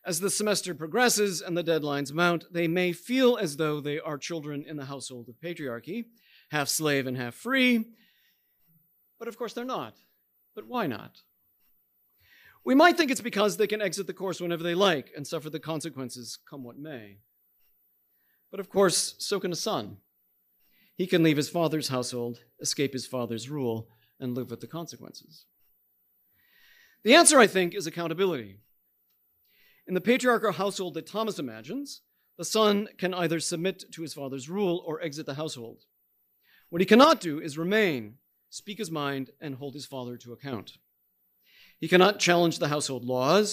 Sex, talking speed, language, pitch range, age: male, 170 wpm, English, 120-185 Hz, 40-59